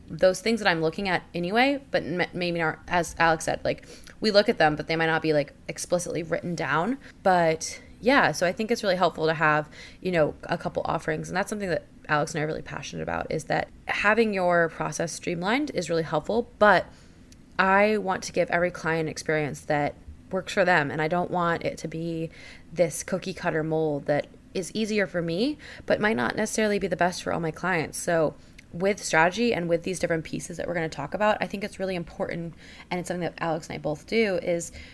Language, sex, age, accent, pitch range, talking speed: English, female, 20-39, American, 155-185 Hz, 225 wpm